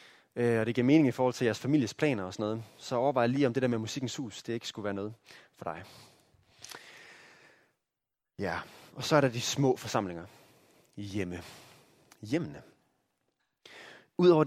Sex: male